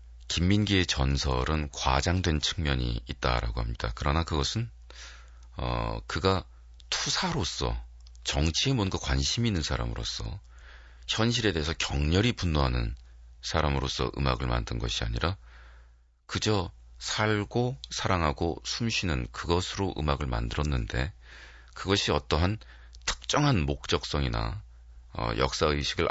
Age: 40-59